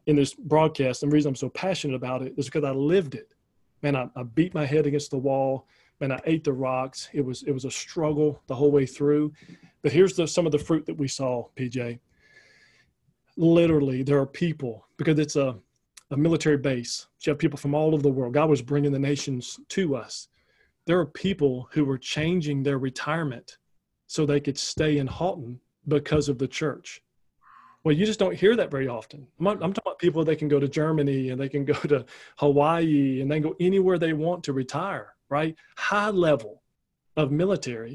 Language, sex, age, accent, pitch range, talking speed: English, male, 40-59, American, 135-155 Hz, 205 wpm